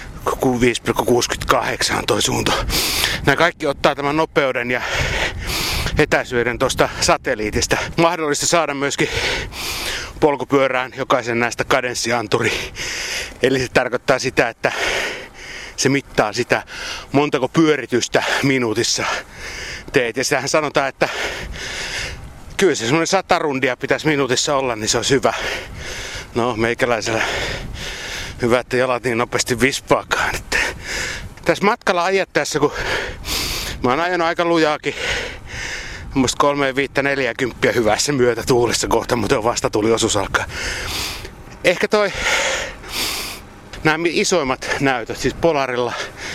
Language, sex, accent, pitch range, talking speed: Finnish, male, native, 125-155 Hz, 110 wpm